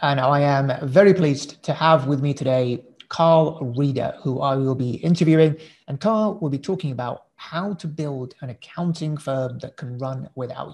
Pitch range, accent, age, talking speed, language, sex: 130-160 Hz, British, 30-49, 185 wpm, English, male